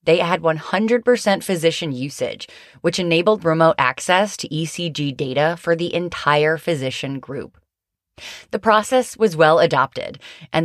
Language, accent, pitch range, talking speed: English, American, 145-180 Hz, 130 wpm